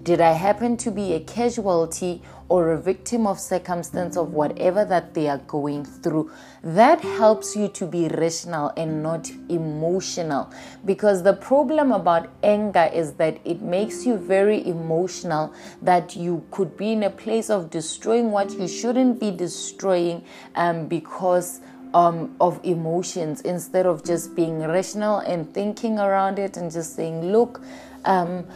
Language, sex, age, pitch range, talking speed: English, female, 20-39, 165-205 Hz, 155 wpm